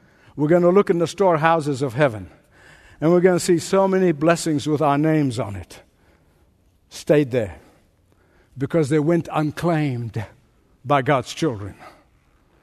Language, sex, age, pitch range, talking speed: English, male, 60-79, 150-220 Hz, 145 wpm